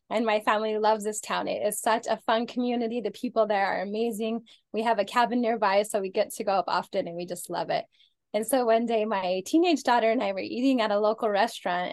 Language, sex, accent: English, female, American